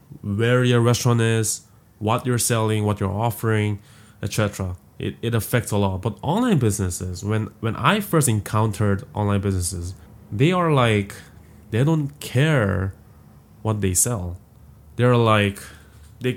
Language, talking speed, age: English, 140 wpm, 20-39